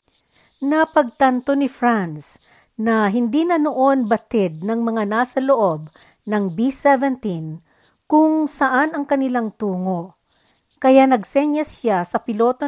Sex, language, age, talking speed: female, Filipino, 50-69, 115 wpm